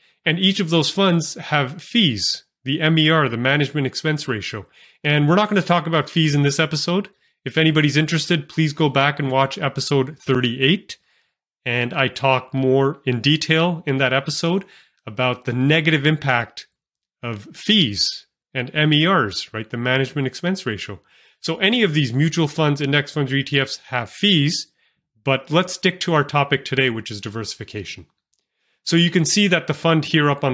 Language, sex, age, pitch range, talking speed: English, male, 30-49, 125-165 Hz, 175 wpm